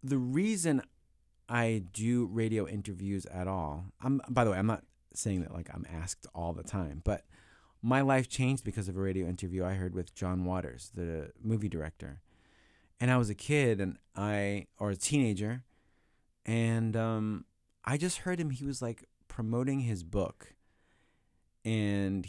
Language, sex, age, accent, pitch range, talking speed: English, male, 30-49, American, 90-120 Hz, 165 wpm